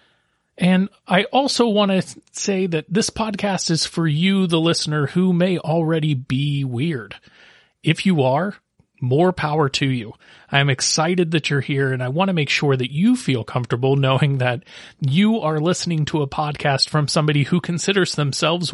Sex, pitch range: male, 135-180 Hz